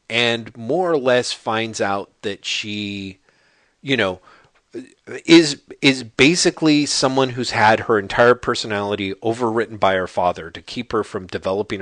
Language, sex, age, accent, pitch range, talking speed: English, male, 40-59, American, 110-155 Hz, 140 wpm